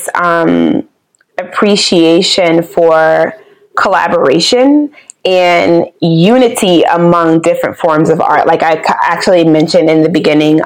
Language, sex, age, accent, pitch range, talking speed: English, female, 20-39, American, 170-230 Hz, 105 wpm